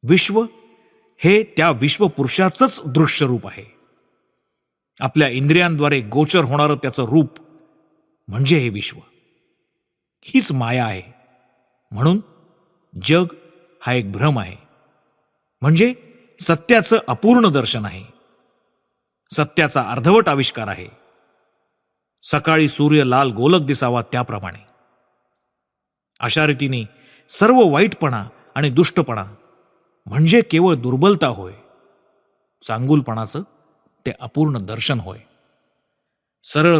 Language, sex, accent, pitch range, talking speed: Marathi, male, native, 125-170 Hz, 90 wpm